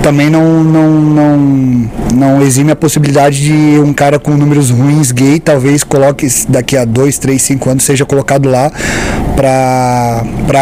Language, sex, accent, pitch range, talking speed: Portuguese, male, Brazilian, 120-145 Hz, 140 wpm